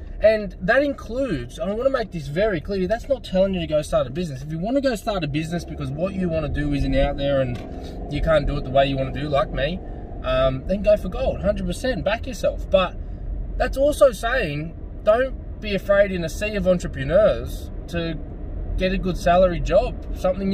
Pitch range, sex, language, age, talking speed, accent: 130-205 Hz, male, English, 20-39, 225 wpm, Australian